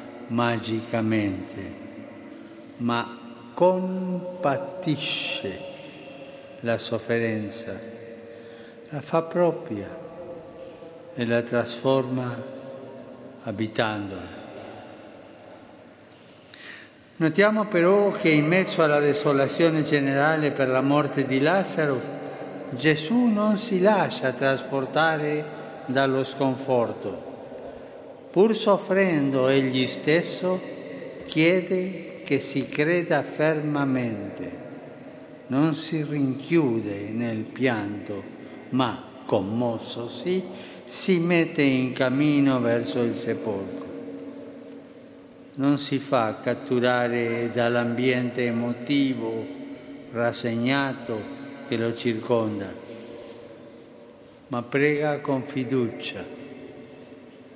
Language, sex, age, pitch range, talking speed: Italian, male, 60-79, 120-165 Hz, 75 wpm